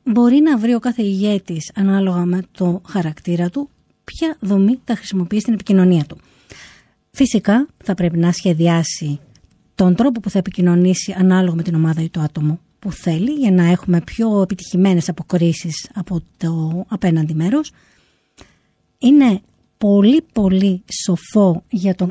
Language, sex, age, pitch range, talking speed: Greek, female, 20-39, 175-230 Hz, 145 wpm